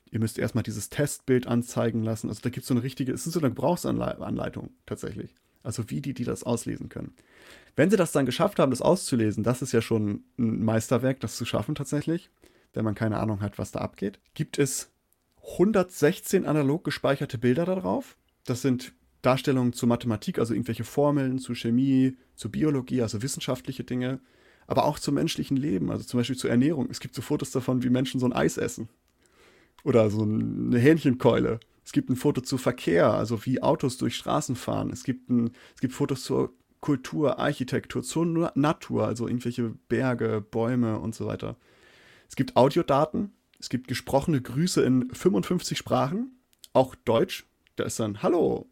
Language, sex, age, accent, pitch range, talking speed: German, male, 30-49, German, 115-145 Hz, 175 wpm